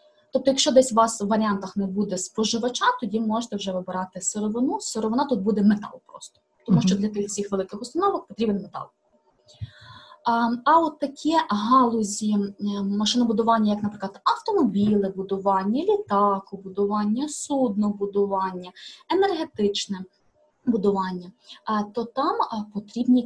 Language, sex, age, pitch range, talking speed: Ukrainian, female, 20-39, 200-255 Hz, 115 wpm